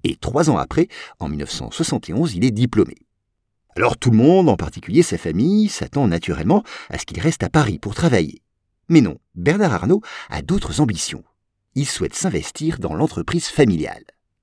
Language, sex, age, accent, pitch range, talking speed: French, male, 50-69, French, 105-160 Hz, 165 wpm